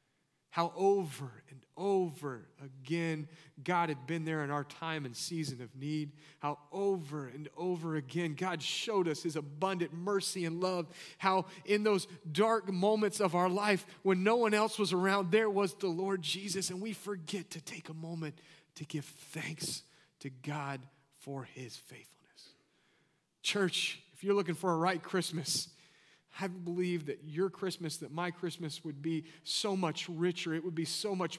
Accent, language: American, English